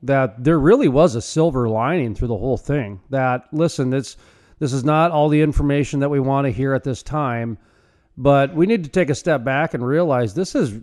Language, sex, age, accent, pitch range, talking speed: English, male, 40-59, American, 120-150 Hz, 215 wpm